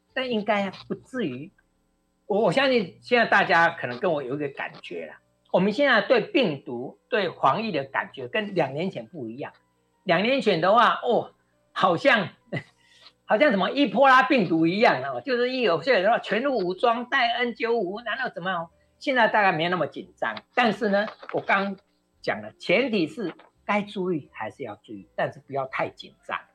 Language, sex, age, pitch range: Chinese, male, 50-69, 160-230 Hz